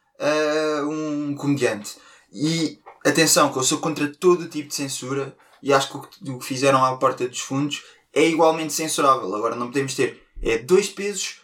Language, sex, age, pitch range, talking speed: Portuguese, male, 20-39, 135-175 Hz, 185 wpm